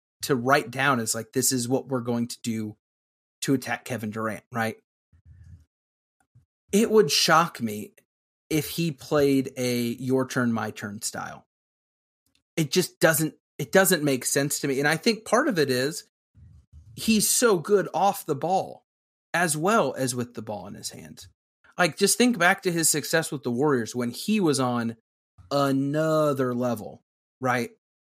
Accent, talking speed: American, 165 wpm